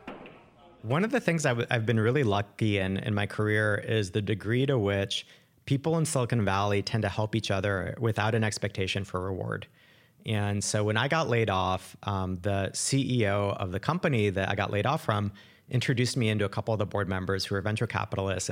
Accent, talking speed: American, 205 wpm